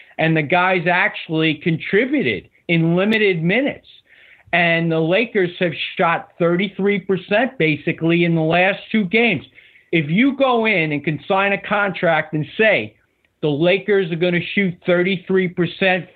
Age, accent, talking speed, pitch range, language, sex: 50-69, American, 135 wpm, 165-205 Hz, English, male